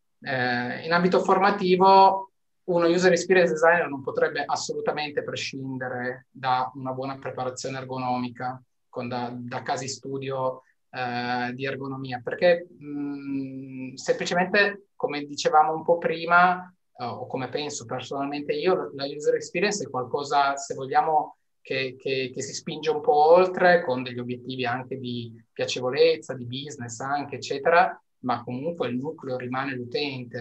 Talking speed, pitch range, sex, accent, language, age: 130 wpm, 130-170 Hz, male, native, Italian, 20-39